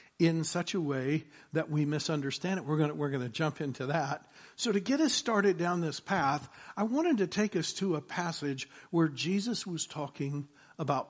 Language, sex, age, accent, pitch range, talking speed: English, male, 60-79, American, 155-200 Hz, 195 wpm